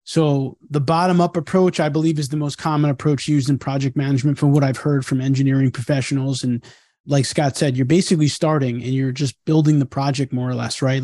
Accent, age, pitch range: American, 30-49, 135-155 Hz